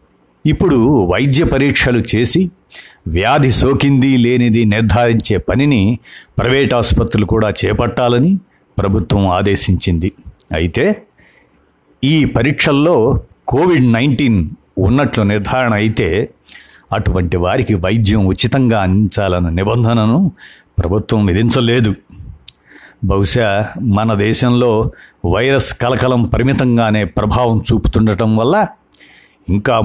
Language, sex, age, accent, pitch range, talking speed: Telugu, male, 50-69, native, 100-125 Hz, 80 wpm